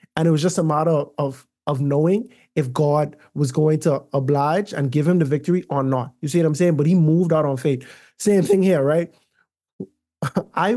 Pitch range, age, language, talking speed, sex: 140-185 Hz, 20-39, English, 210 wpm, male